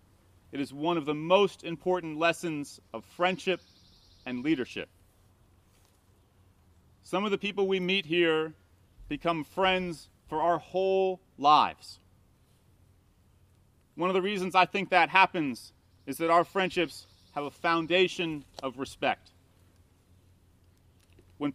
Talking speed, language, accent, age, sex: 120 wpm, English, American, 40-59, male